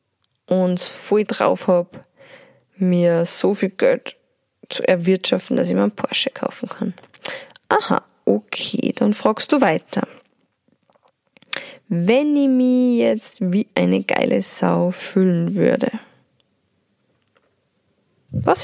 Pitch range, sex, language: 175-240 Hz, female, German